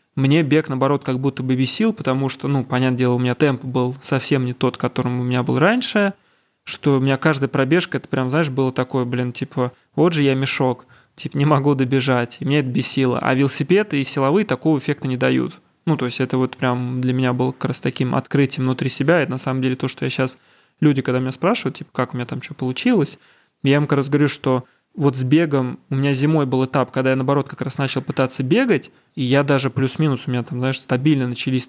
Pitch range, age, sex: 130-145 Hz, 20-39, male